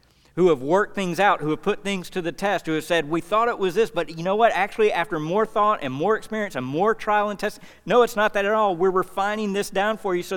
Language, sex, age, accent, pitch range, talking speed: English, male, 50-69, American, 135-195 Hz, 285 wpm